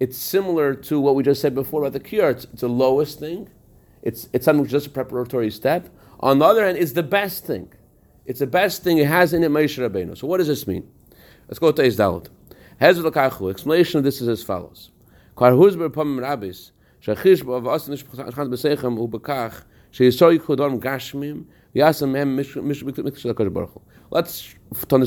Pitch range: 120-150 Hz